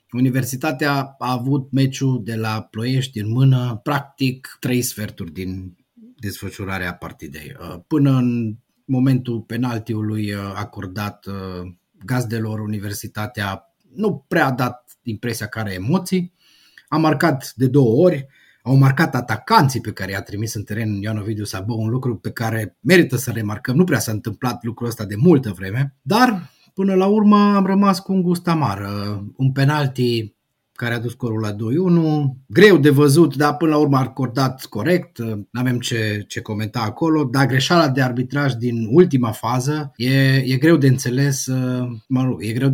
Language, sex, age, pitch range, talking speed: Romanian, male, 30-49, 110-145 Hz, 155 wpm